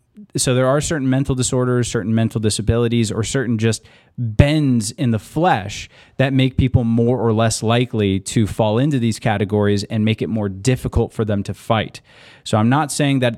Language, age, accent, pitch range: English, 30-49, American, 110-130 Hz